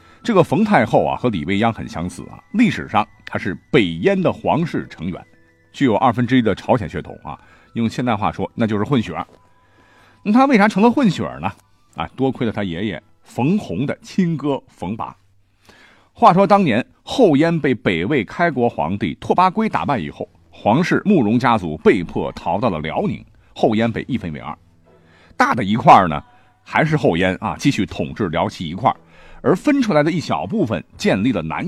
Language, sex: Chinese, male